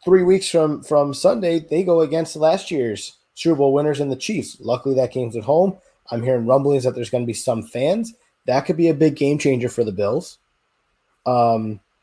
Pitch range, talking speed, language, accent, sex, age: 110-155 Hz, 210 wpm, English, American, male, 20-39